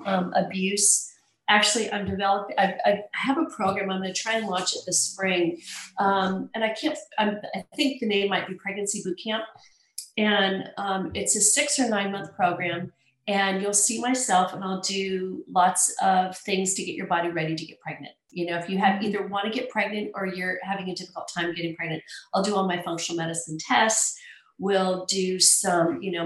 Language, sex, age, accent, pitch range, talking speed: English, female, 40-59, American, 175-200 Hz, 200 wpm